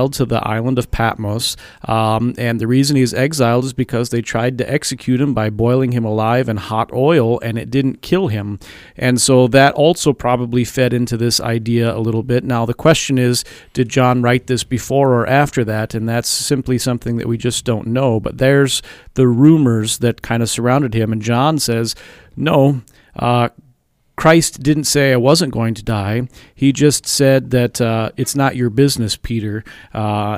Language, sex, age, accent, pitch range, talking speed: English, male, 40-59, American, 115-135 Hz, 190 wpm